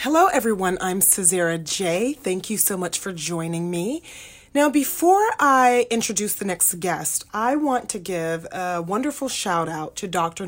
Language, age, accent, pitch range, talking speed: English, 30-49, American, 175-245 Hz, 165 wpm